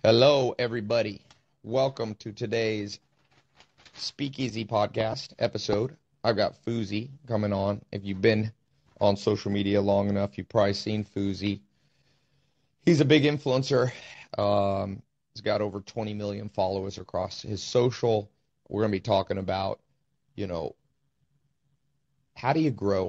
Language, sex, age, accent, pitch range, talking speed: English, male, 30-49, American, 100-125 Hz, 130 wpm